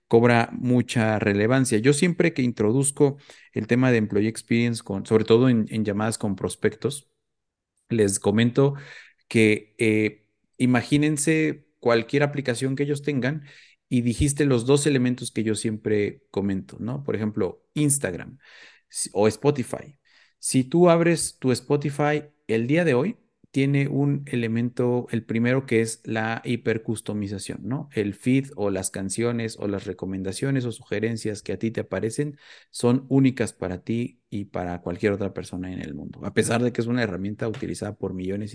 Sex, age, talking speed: male, 40-59, 155 wpm